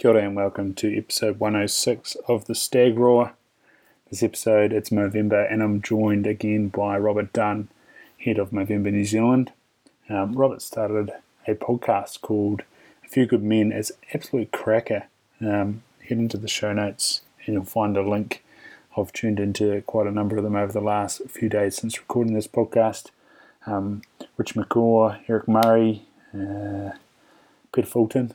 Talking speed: 160 wpm